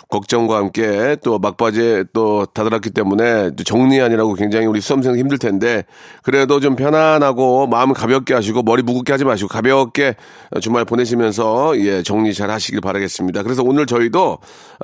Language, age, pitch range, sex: Korean, 40-59, 110-150 Hz, male